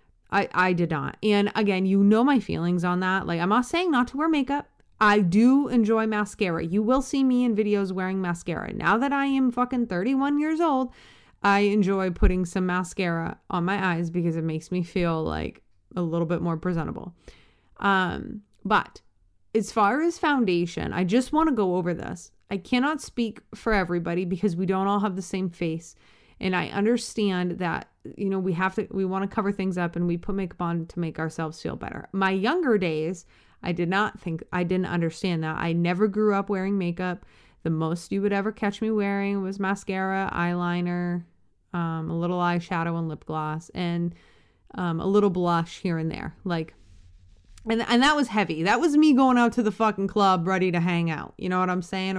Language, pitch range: English, 175-215 Hz